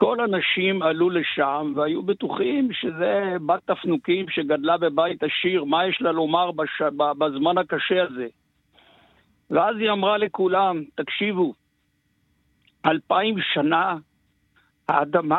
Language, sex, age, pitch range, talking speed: Hebrew, male, 60-79, 165-215 Hz, 110 wpm